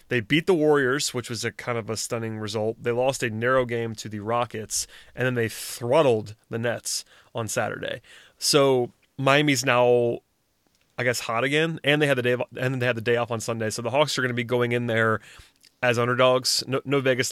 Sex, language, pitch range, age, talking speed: male, English, 115-130 Hz, 30-49, 225 wpm